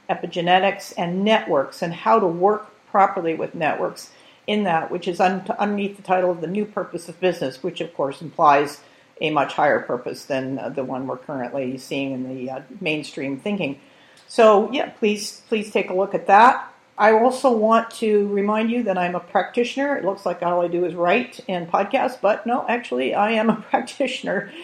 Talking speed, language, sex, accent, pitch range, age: 190 wpm, English, female, American, 170-205 Hz, 50-69